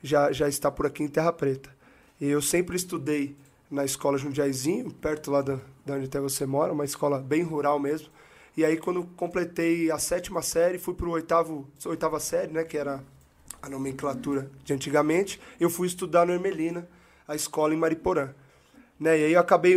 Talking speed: 185 wpm